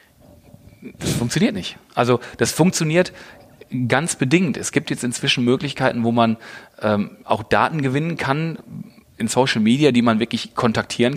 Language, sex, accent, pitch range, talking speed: German, male, German, 110-135 Hz, 145 wpm